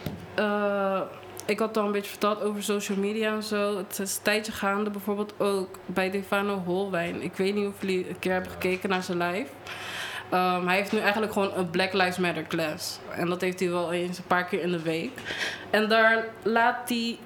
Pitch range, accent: 185-215 Hz, Dutch